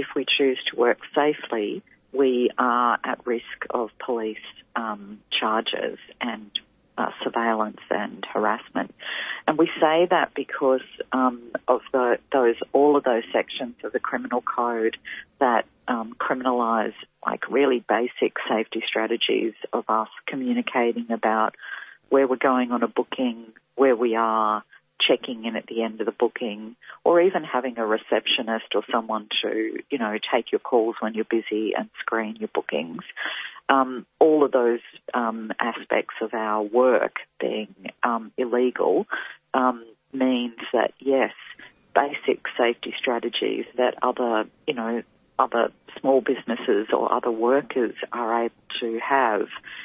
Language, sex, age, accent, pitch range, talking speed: English, female, 40-59, Australian, 110-130 Hz, 140 wpm